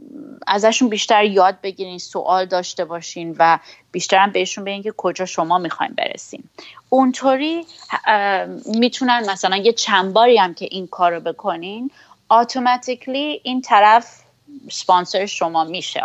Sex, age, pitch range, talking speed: female, 30-49, 170-220 Hz, 125 wpm